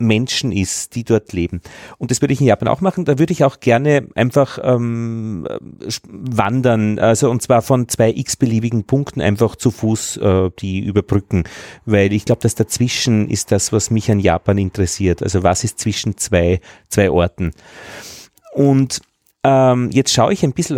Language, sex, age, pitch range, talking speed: German, male, 30-49, 105-145 Hz, 175 wpm